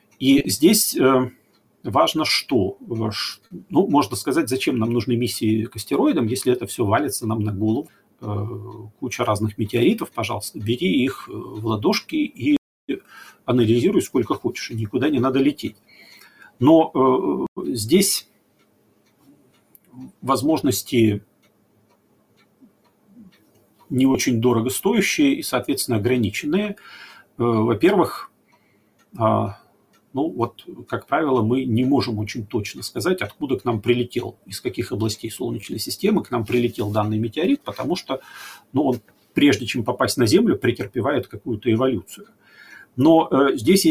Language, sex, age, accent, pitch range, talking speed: Russian, male, 40-59, native, 110-140 Hz, 120 wpm